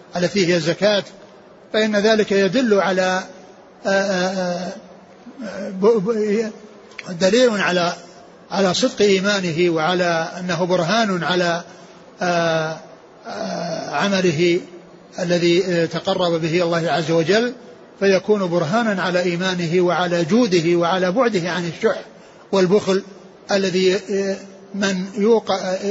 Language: Arabic